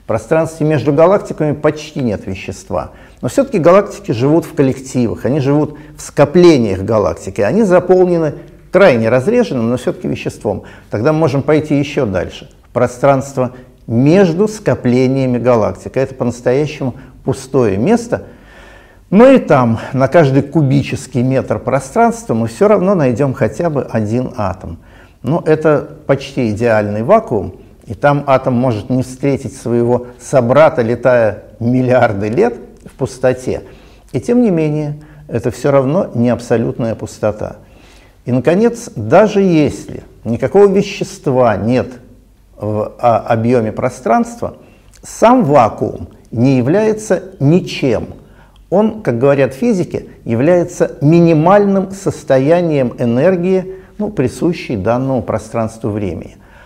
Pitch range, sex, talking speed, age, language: 120-165 Hz, male, 120 wpm, 50-69, Russian